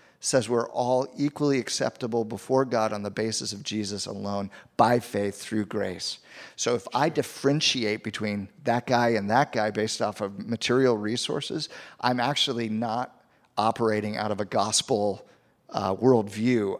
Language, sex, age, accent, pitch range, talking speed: English, male, 50-69, American, 105-130 Hz, 150 wpm